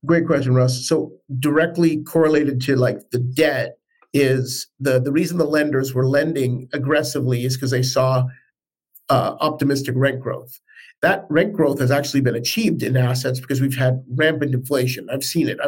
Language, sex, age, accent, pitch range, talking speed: English, male, 50-69, American, 130-155 Hz, 170 wpm